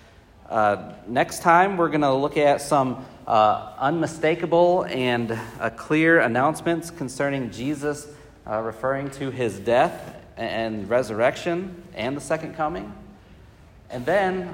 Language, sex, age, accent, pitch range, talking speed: English, male, 40-59, American, 115-150 Hz, 125 wpm